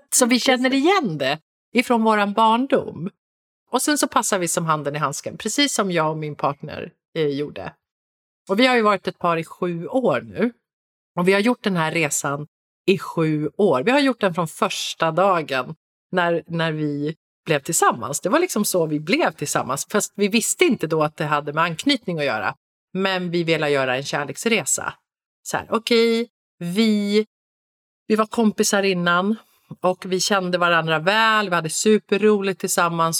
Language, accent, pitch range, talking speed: Swedish, native, 165-225 Hz, 185 wpm